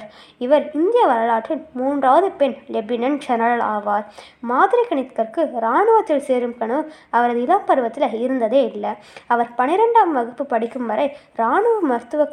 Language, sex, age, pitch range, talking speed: Tamil, female, 20-39, 235-320 Hz, 115 wpm